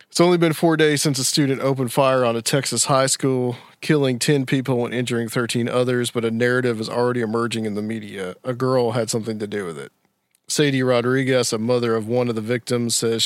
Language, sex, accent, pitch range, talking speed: English, male, American, 115-135 Hz, 220 wpm